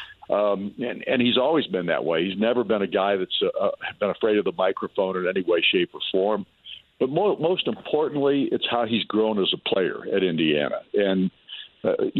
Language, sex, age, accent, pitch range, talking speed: English, male, 50-69, American, 100-130 Hz, 195 wpm